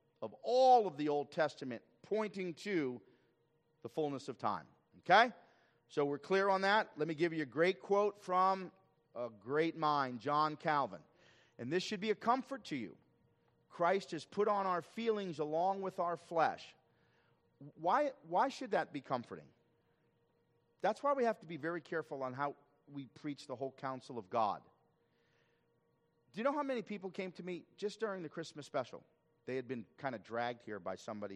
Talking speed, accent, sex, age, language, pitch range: 180 wpm, American, male, 40-59, English, 120-165 Hz